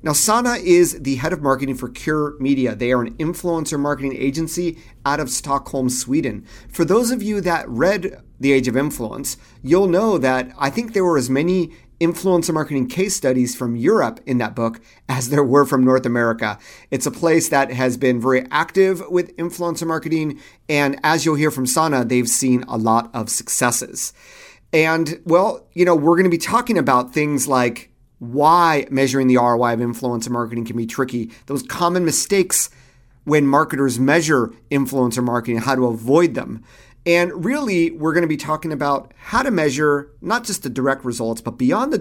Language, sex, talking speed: English, male, 185 wpm